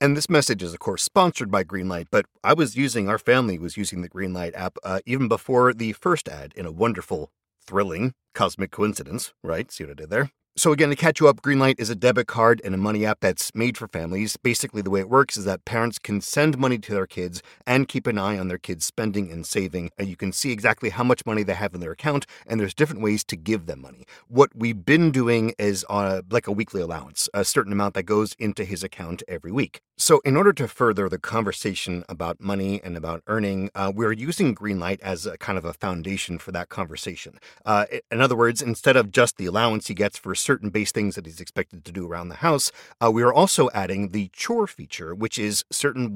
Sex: male